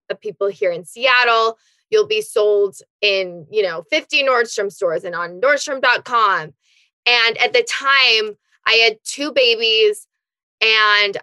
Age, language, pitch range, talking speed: 20-39, English, 200-280 Hz, 140 wpm